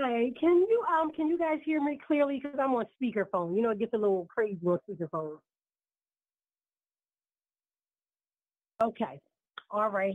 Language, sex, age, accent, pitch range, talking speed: English, female, 40-59, American, 230-305 Hz, 150 wpm